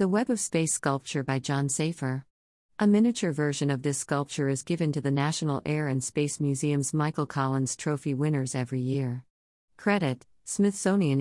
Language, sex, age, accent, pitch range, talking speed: English, female, 50-69, American, 130-155 Hz, 165 wpm